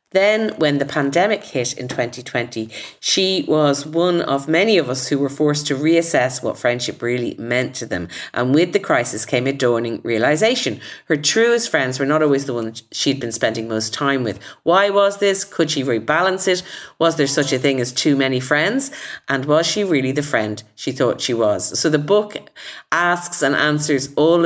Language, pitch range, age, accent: English, 130-175 Hz, 50-69, Irish